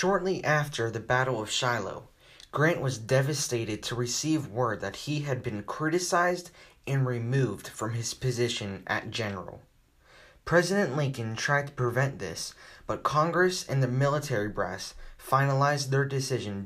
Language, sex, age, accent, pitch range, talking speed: English, male, 20-39, American, 110-150 Hz, 140 wpm